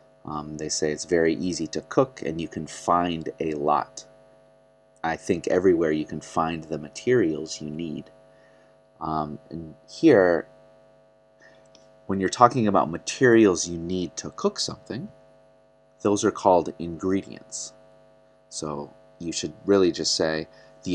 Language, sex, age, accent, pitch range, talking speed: English, male, 30-49, American, 85-110 Hz, 140 wpm